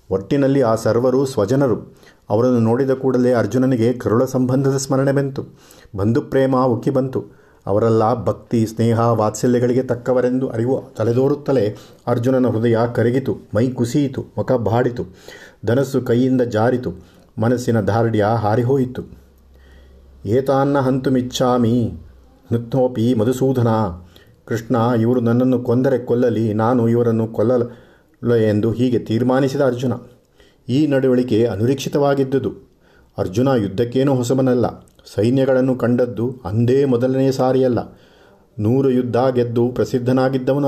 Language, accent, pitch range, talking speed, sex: Kannada, native, 115-130 Hz, 95 wpm, male